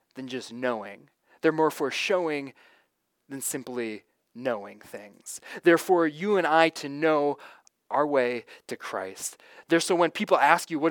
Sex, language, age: male, English, 20-39